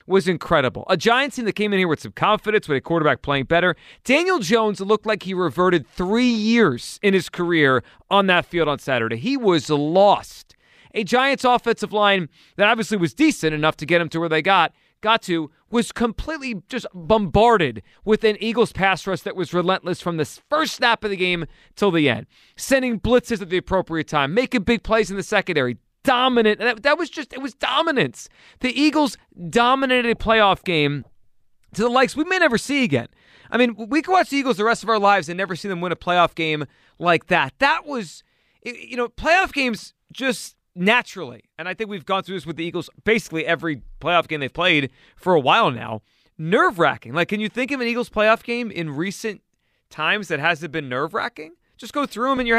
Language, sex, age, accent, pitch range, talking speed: English, male, 30-49, American, 170-235 Hz, 210 wpm